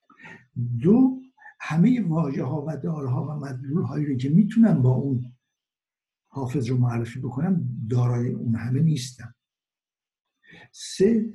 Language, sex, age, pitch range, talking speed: Persian, male, 60-79, 125-190 Hz, 120 wpm